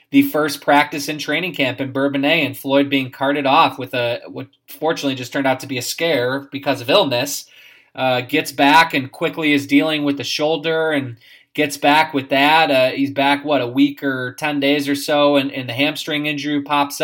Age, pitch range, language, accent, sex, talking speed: 20-39, 135-155 Hz, English, American, male, 210 wpm